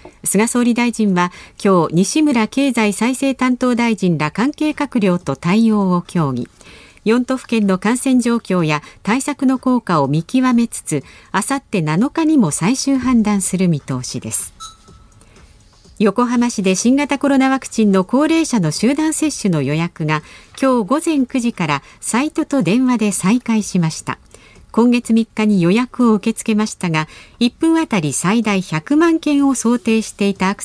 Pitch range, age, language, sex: 175-260 Hz, 50-69, Japanese, female